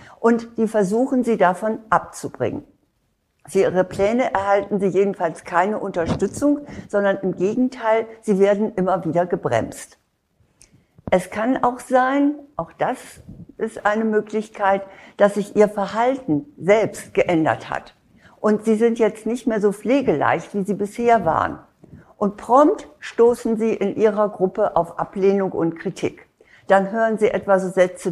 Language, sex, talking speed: German, female, 140 wpm